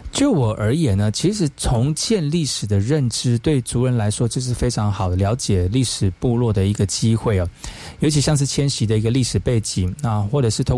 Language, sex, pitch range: Chinese, male, 105-135 Hz